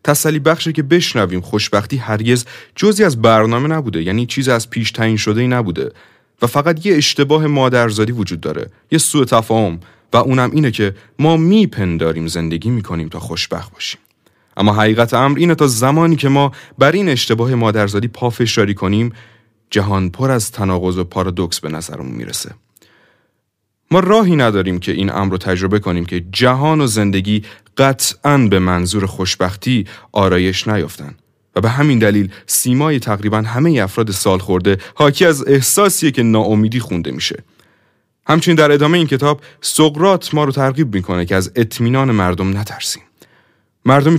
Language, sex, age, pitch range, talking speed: Persian, male, 30-49, 100-150 Hz, 155 wpm